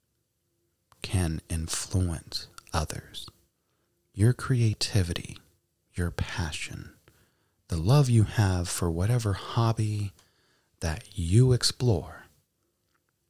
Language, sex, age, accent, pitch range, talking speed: English, male, 30-49, American, 85-115 Hz, 75 wpm